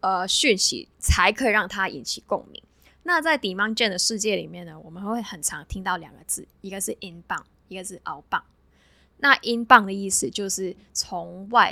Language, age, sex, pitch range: Chinese, 10-29, female, 185-220 Hz